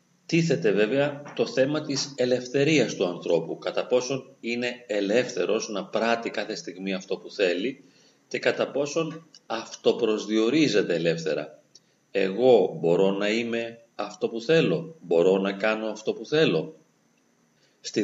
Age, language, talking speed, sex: 40-59, Greek, 125 wpm, male